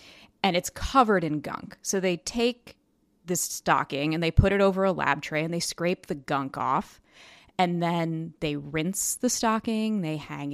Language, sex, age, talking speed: English, female, 30-49, 180 wpm